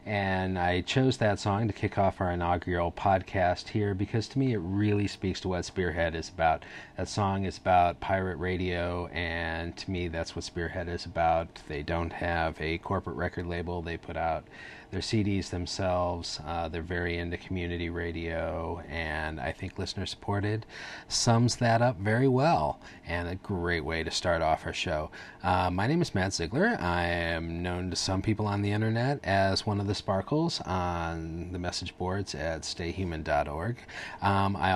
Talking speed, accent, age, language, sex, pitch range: 175 wpm, American, 30-49, English, male, 85-105 Hz